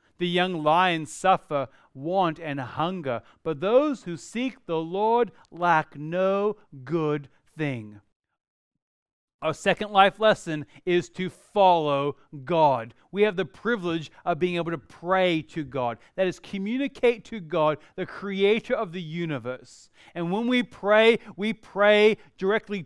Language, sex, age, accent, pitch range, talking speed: English, male, 40-59, American, 150-200 Hz, 140 wpm